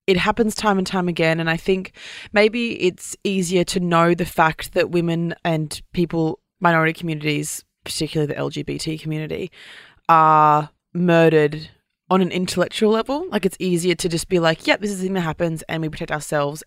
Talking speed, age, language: 180 wpm, 20-39, English